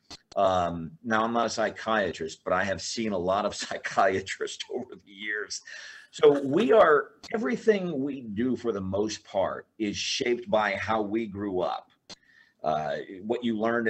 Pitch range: 100-145 Hz